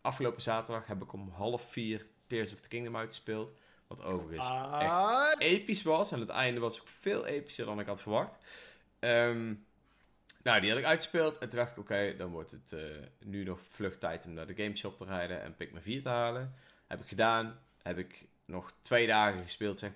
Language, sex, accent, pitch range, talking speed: Dutch, male, Dutch, 100-125 Hz, 205 wpm